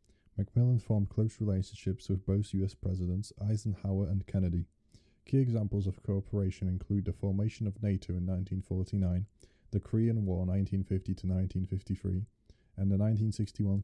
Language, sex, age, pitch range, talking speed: English, male, 20-39, 95-105 Hz, 120 wpm